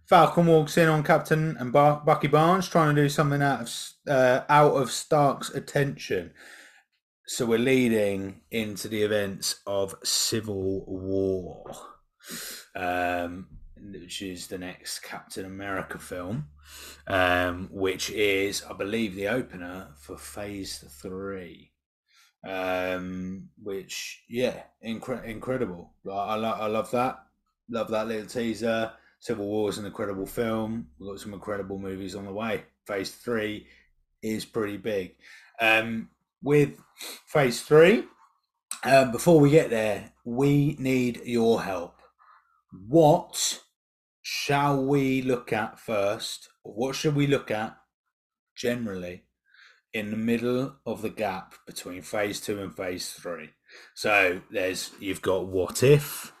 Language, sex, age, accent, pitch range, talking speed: English, male, 30-49, British, 95-130 Hz, 130 wpm